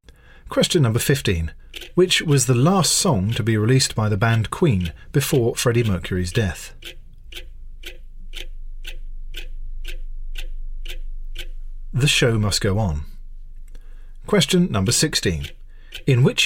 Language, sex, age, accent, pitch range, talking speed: English, male, 40-59, British, 95-140 Hz, 105 wpm